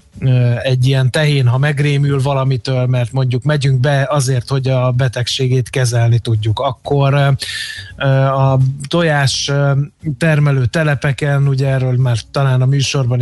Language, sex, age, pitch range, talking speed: Hungarian, male, 20-39, 125-140 Hz, 120 wpm